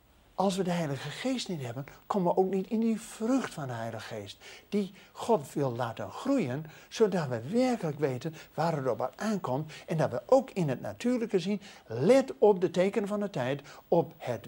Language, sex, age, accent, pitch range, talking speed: Dutch, male, 60-79, Dutch, 135-220 Hz, 200 wpm